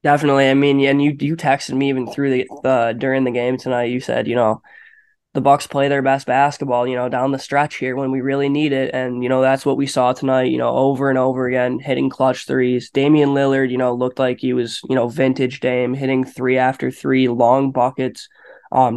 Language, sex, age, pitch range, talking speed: English, male, 20-39, 125-140 Hz, 230 wpm